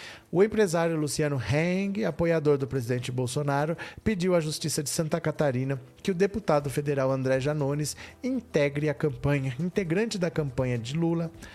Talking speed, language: 145 wpm, Portuguese